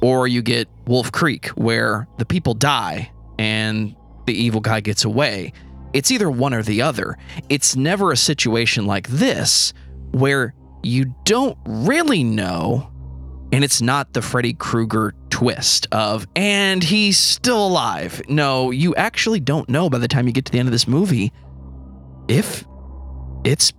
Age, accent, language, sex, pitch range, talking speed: 20-39, American, English, male, 105-135 Hz, 155 wpm